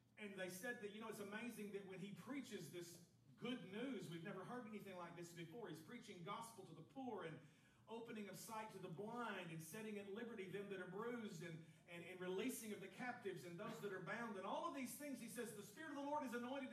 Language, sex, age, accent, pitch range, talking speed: English, male, 40-59, American, 175-245 Hz, 250 wpm